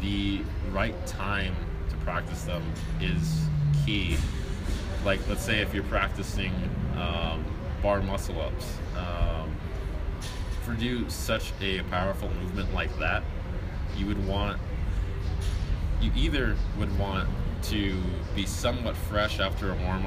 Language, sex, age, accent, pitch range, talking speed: English, male, 20-39, American, 80-100 Hz, 125 wpm